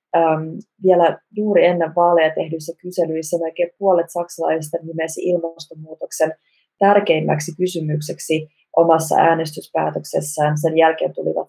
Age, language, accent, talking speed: 20-39, Finnish, native, 95 wpm